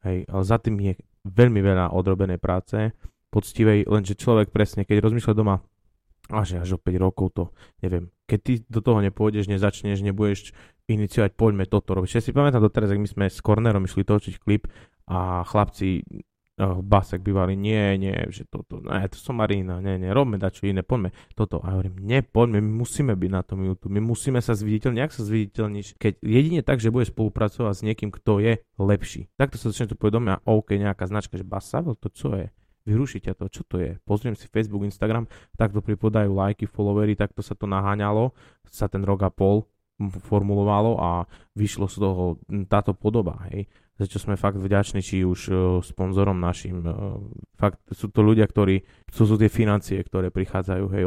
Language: Slovak